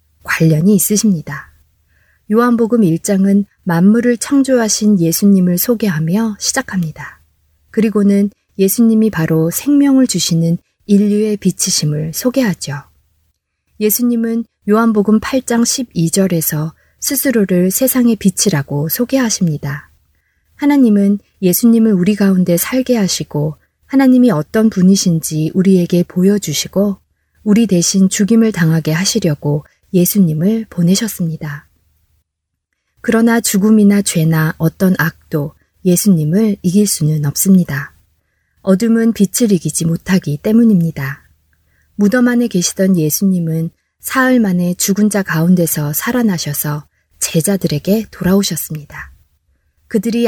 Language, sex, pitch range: Korean, female, 155-215 Hz